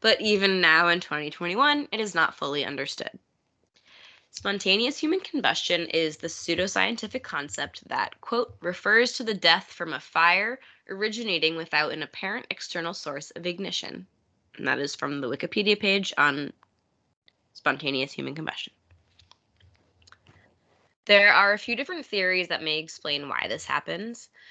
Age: 20-39